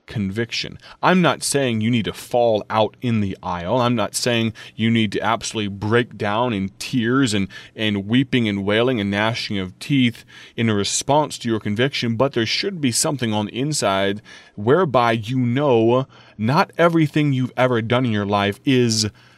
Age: 30-49